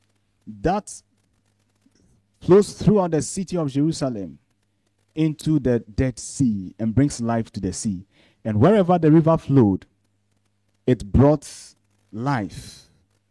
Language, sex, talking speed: English, male, 115 wpm